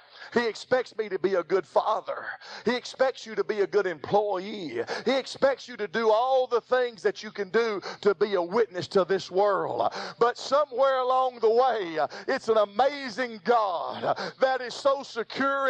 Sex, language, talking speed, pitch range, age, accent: male, English, 185 wpm, 210-275 Hz, 50-69, American